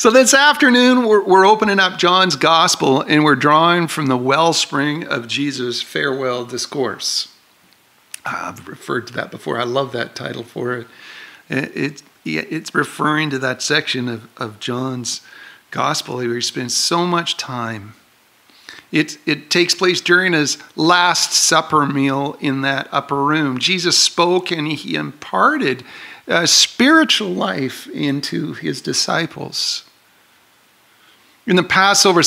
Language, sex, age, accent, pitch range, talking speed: English, male, 50-69, American, 140-195 Hz, 140 wpm